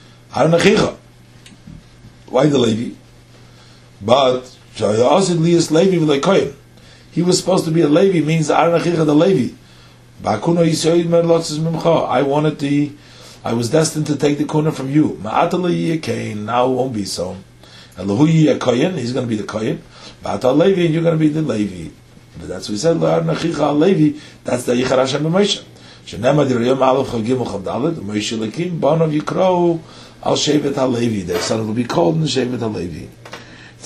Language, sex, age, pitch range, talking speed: English, male, 50-69, 110-160 Hz, 120 wpm